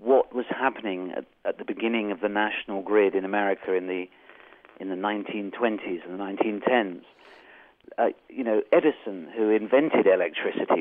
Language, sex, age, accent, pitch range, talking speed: English, male, 50-69, British, 105-140 Hz, 165 wpm